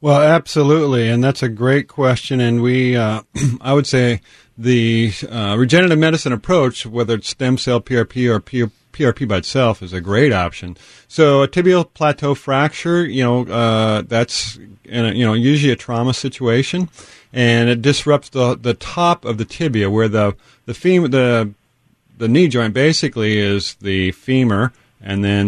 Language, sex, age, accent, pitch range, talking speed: English, male, 40-59, American, 105-135 Hz, 165 wpm